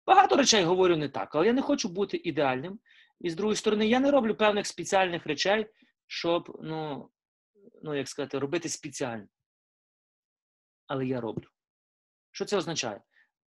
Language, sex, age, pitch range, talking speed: Ukrainian, male, 30-49, 135-220 Hz, 150 wpm